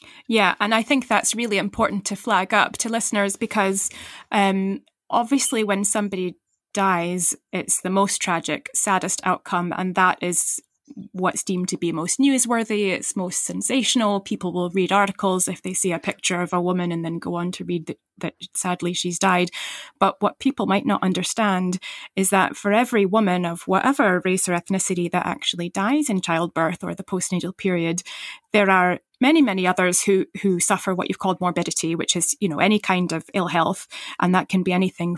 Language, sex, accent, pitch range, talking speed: English, female, British, 175-205 Hz, 190 wpm